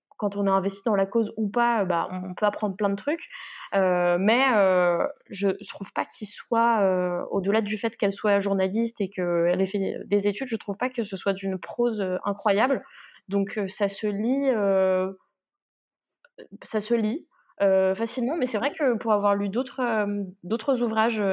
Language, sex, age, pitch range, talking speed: French, female, 20-39, 190-225 Hz, 185 wpm